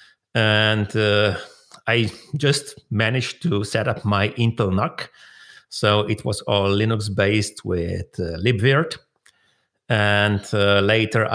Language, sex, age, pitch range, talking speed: English, male, 40-59, 105-135 Hz, 120 wpm